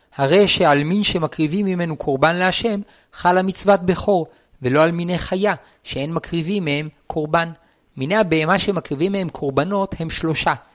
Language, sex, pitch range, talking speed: Hebrew, male, 155-200 Hz, 140 wpm